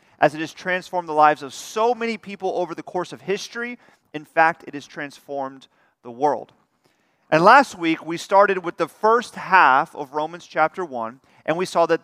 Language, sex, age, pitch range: English, male, 40-59, 150-205 Hz